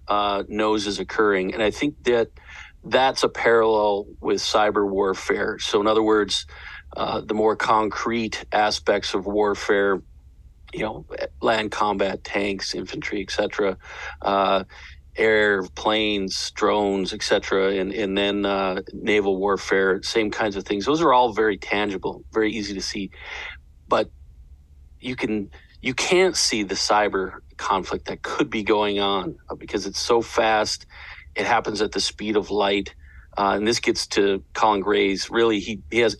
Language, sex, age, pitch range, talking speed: English, male, 40-59, 90-110 Hz, 150 wpm